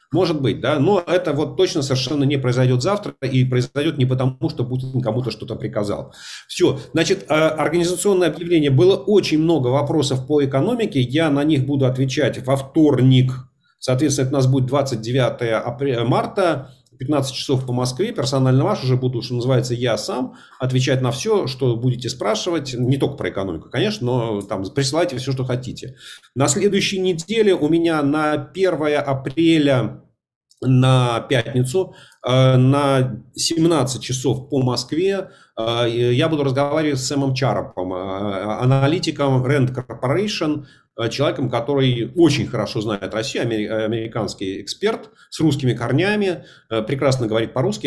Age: 40-59